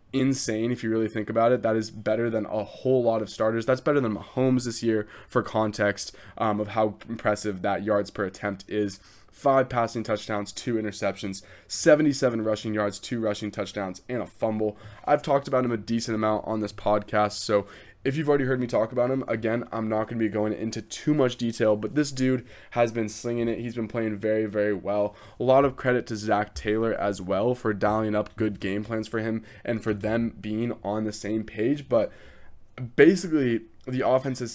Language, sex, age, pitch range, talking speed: English, male, 20-39, 105-120 Hz, 210 wpm